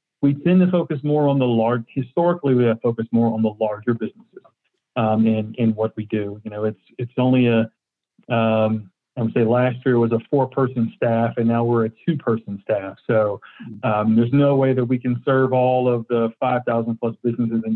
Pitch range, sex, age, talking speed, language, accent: 115-130 Hz, male, 40-59, 215 wpm, English, American